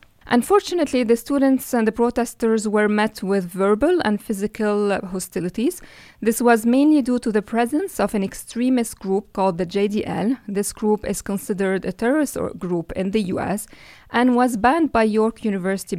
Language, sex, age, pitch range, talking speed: English, female, 20-39, 200-255 Hz, 160 wpm